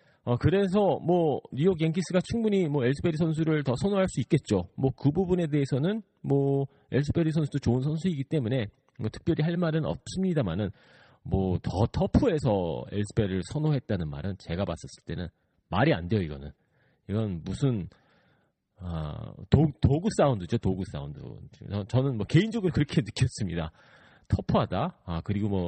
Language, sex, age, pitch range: Korean, male, 40-59, 100-160 Hz